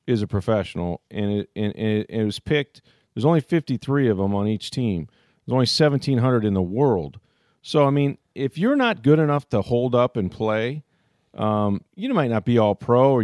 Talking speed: 210 wpm